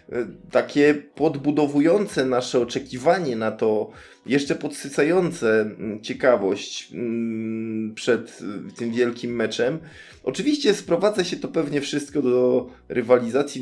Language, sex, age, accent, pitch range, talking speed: Polish, male, 20-39, native, 120-155 Hz, 95 wpm